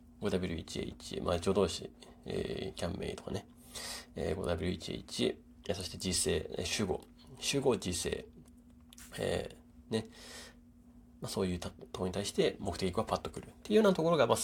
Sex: male